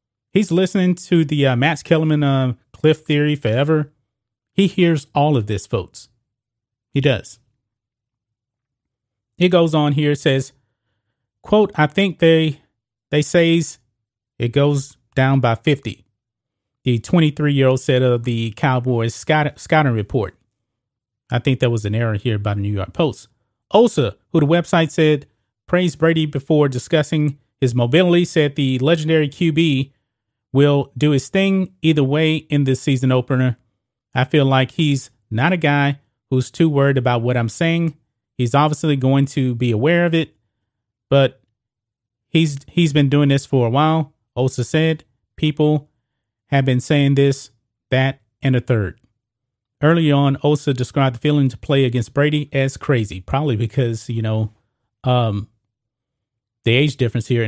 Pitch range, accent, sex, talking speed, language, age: 115-150 Hz, American, male, 150 wpm, English, 30-49